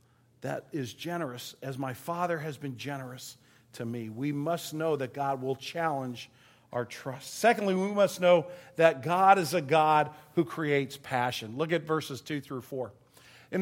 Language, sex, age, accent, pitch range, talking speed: English, male, 50-69, American, 155-220 Hz, 170 wpm